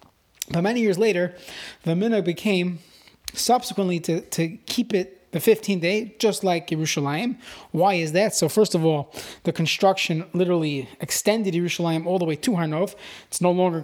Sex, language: male, English